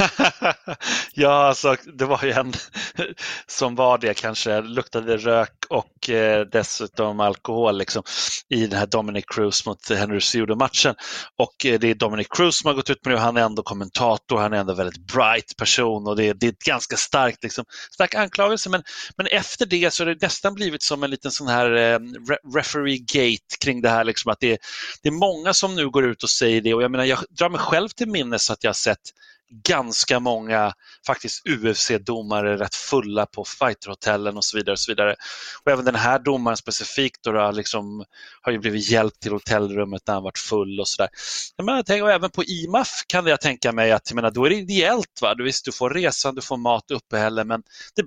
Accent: native